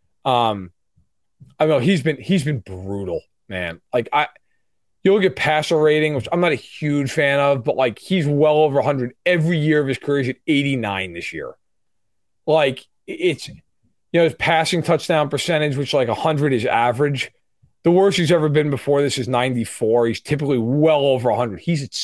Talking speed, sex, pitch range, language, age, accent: 185 wpm, male, 130-175 Hz, English, 30-49, American